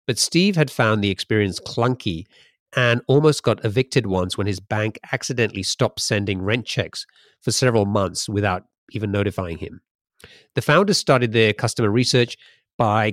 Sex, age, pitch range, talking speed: male, 40-59, 100-120 Hz, 155 wpm